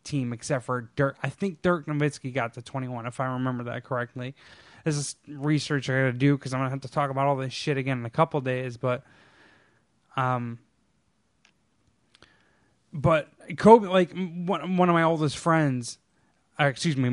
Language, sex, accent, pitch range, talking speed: English, male, American, 125-155 Hz, 180 wpm